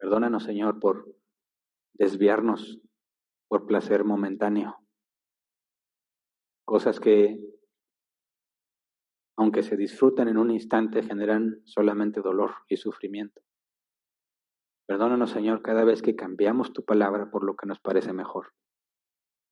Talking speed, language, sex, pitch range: 105 wpm, Spanish, male, 105-110 Hz